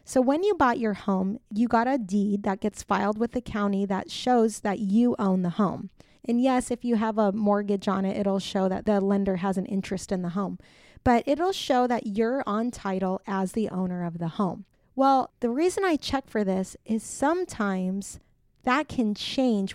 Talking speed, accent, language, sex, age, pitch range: 205 wpm, American, English, female, 20-39, 205-255 Hz